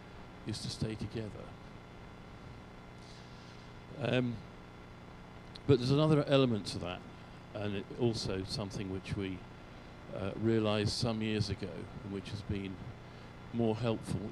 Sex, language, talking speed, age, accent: male, English, 110 wpm, 50-69, British